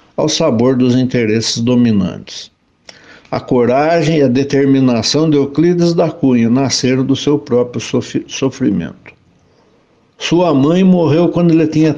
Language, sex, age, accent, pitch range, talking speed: Portuguese, male, 60-79, Brazilian, 130-165 Hz, 125 wpm